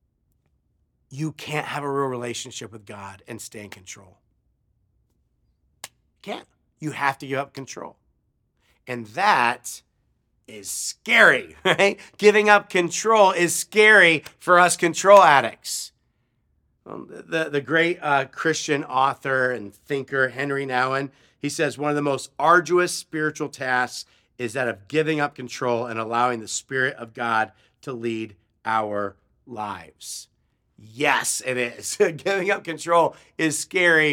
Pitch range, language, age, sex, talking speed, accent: 125-175 Hz, English, 50-69, male, 135 wpm, American